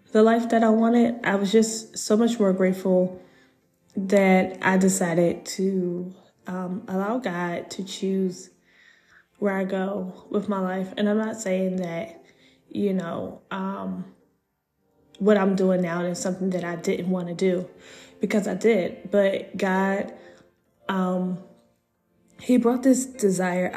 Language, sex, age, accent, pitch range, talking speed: English, female, 10-29, American, 185-205 Hz, 145 wpm